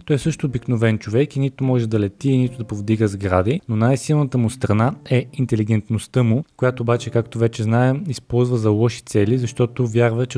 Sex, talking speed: male, 190 wpm